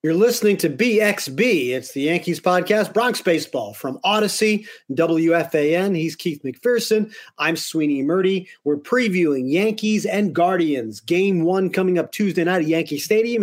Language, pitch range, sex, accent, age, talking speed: English, 145-185 Hz, male, American, 40-59, 145 wpm